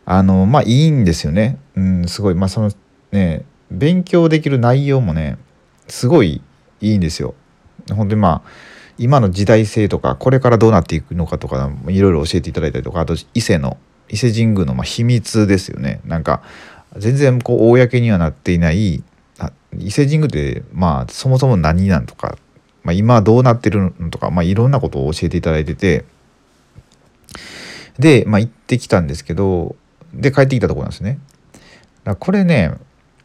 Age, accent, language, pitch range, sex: 40-59, native, Japanese, 85-130 Hz, male